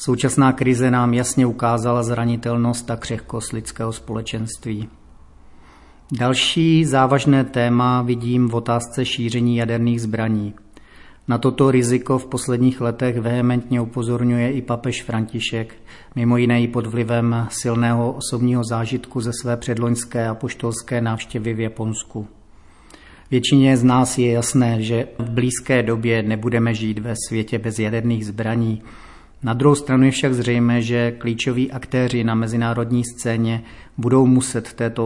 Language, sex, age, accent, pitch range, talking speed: Czech, male, 40-59, native, 115-125 Hz, 130 wpm